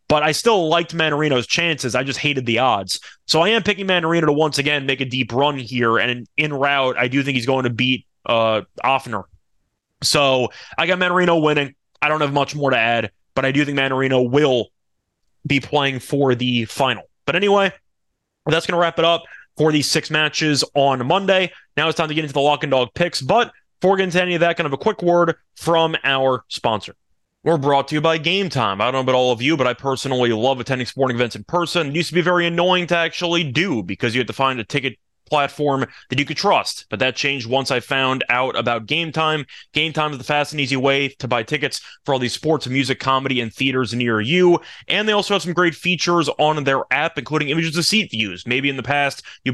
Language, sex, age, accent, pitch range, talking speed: English, male, 20-39, American, 130-160 Hz, 235 wpm